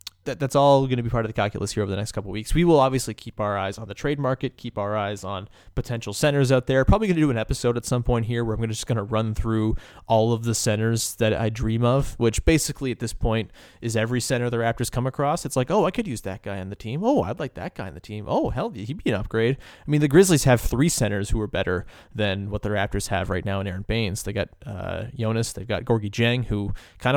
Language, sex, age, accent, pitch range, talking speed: English, male, 20-39, American, 110-145 Hz, 285 wpm